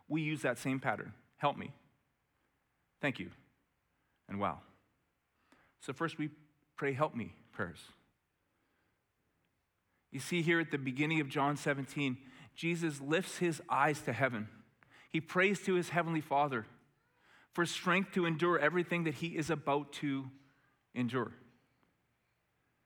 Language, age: English, 30-49